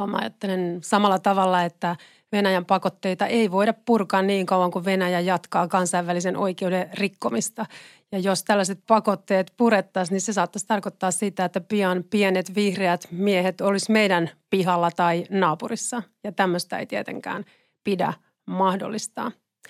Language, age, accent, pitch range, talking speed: Finnish, 30-49, native, 180-210 Hz, 130 wpm